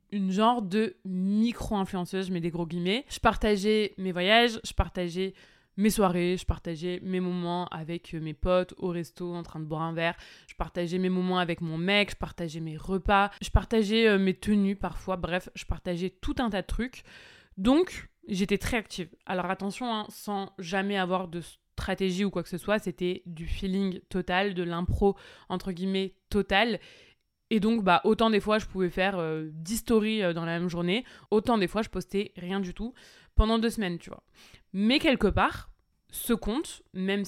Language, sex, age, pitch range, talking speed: French, female, 20-39, 180-215 Hz, 190 wpm